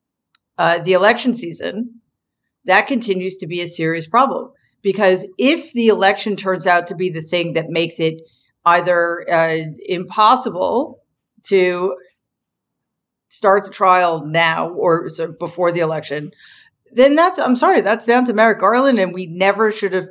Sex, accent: female, American